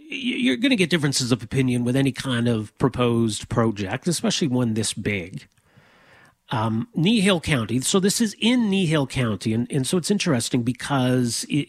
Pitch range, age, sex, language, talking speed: 115-150 Hz, 40-59, male, English, 170 wpm